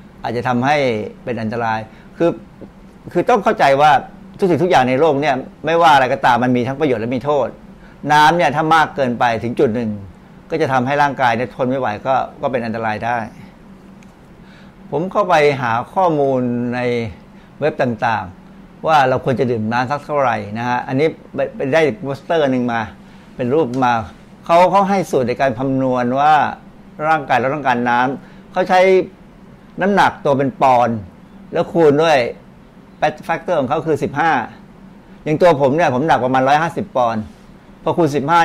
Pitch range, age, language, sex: 125-185 Hz, 60-79, Thai, male